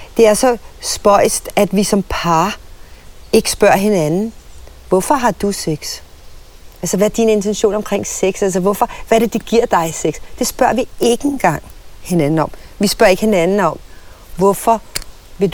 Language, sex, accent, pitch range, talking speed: Danish, female, native, 180-225 Hz, 175 wpm